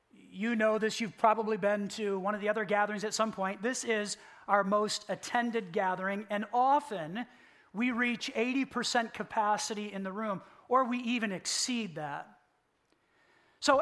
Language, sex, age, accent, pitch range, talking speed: English, male, 40-59, American, 210-235 Hz, 155 wpm